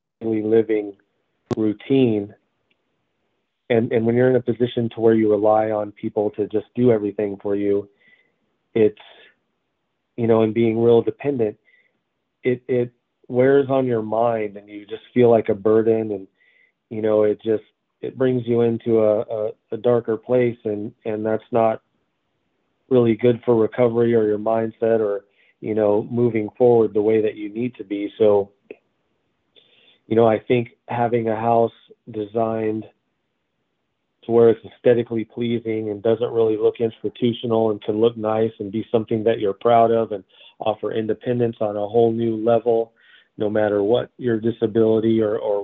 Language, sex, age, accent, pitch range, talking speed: English, male, 40-59, American, 105-120 Hz, 160 wpm